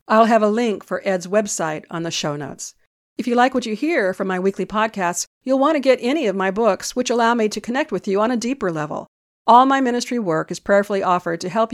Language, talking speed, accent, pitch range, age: English, 250 wpm, American, 185-235 Hz, 50-69